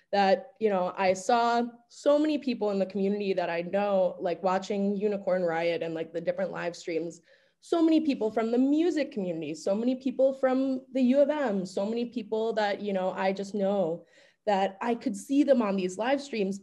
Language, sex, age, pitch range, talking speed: English, female, 20-39, 195-270 Hz, 205 wpm